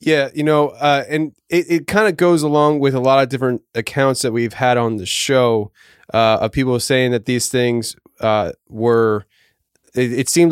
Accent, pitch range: American, 120-140 Hz